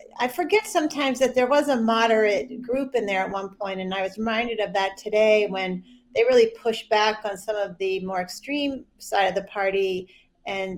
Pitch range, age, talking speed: 195-245 Hz, 40-59, 205 wpm